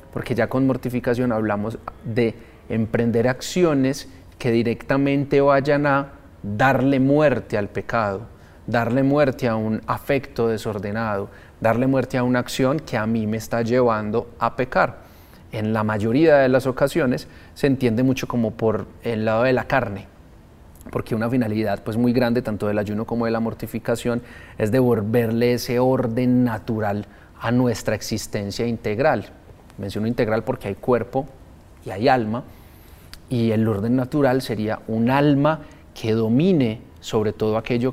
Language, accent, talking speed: Spanish, Colombian, 145 wpm